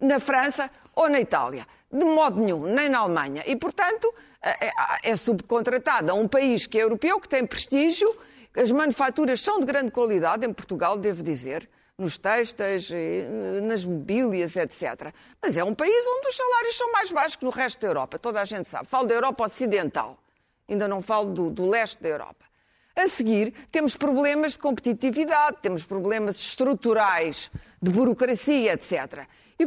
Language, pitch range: Portuguese, 200-285 Hz